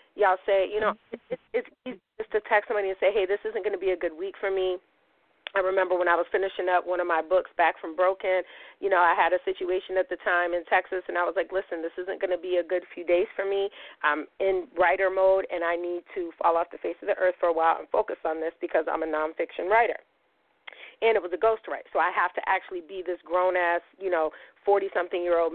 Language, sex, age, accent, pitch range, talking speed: English, female, 40-59, American, 175-235 Hz, 255 wpm